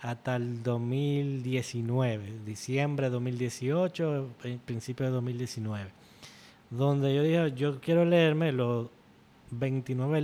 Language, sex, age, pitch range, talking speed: Spanish, male, 20-39, 120-140 Hz, 100 wpm